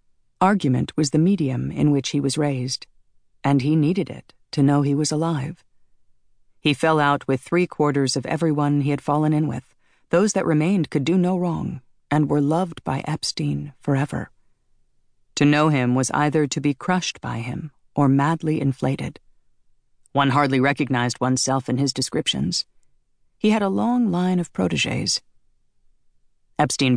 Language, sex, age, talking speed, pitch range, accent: English, female, 40-59, 160 wpm, 130-160 Hz, American